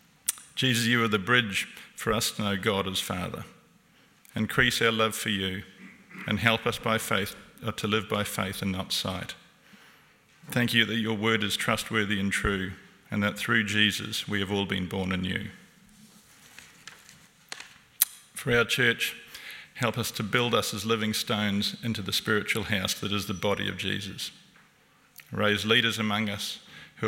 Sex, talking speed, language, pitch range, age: male, 165 wpm, English, 100-115 Hz, 40-59